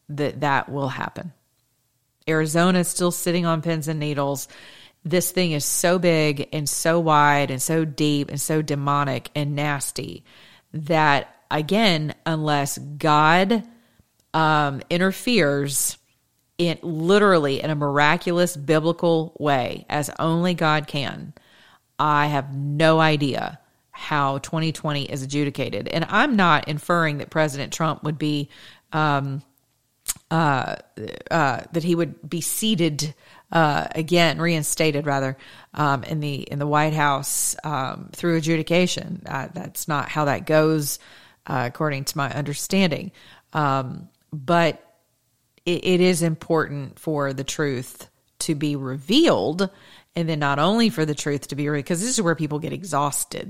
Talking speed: 140 wpm